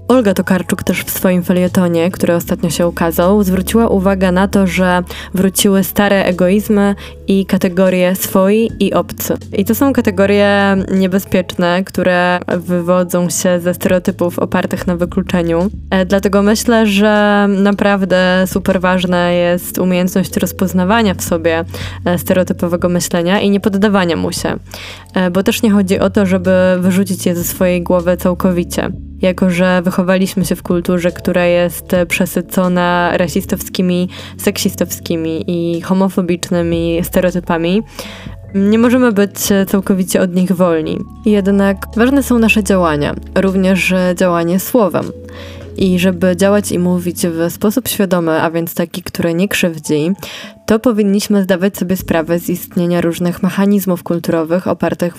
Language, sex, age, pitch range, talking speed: Polish, female, 20-39, 175-200 Hz, 130 wpm